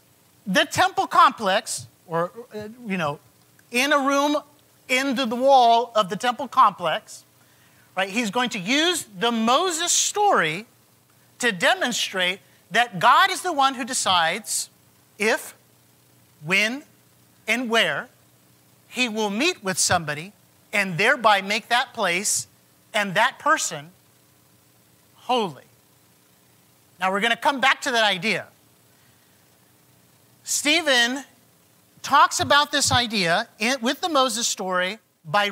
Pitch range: 165-265 Hz